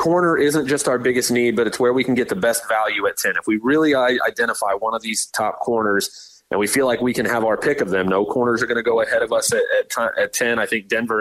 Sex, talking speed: male, 280 wpm